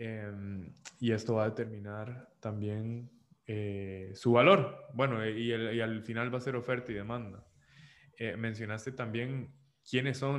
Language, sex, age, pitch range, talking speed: Spanish, male, 20-39, 110-130 Hz, 155 wpm